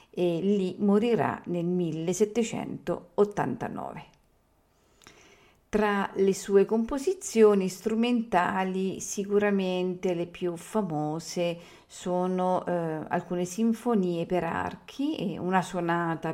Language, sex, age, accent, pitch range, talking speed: Italian, female, 50-69, native, 175-220 Hz, 80 wpm